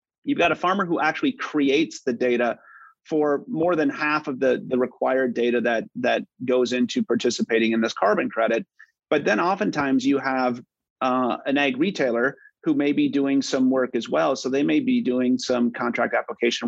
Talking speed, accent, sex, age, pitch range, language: 185 wpm, American, male, 30-49, 125-155 Hz, English